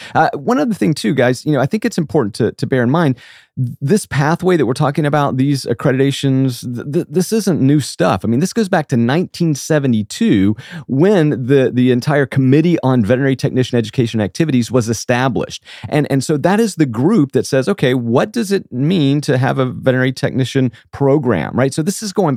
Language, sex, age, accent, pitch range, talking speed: English, male, 30-49, American, 120-155 Hz, 200 wpm